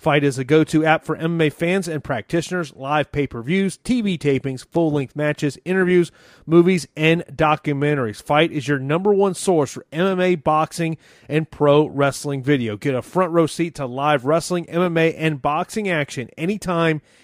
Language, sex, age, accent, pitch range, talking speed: English, male, 30-49, American, 140-170 Hz, 165 wpm